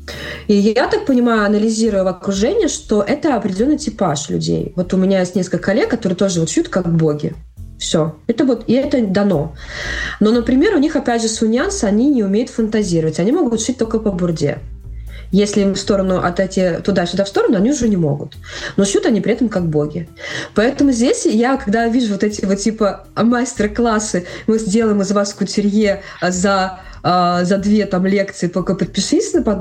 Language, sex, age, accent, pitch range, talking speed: Russian, female, 20-39, native, 175-225 Hz, 180 wpm